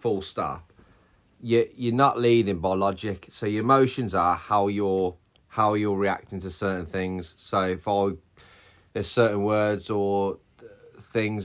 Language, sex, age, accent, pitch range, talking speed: English, male, 30-49, British, 95-115 Hz, 145 wpm